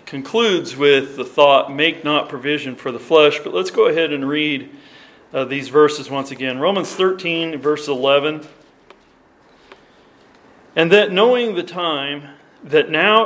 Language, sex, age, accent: English, male, 40-59, American